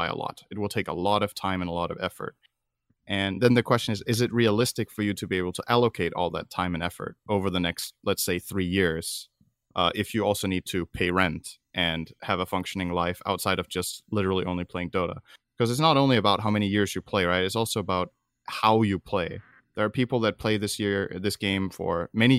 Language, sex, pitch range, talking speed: English, male, 95-115 Hz, 240 wpm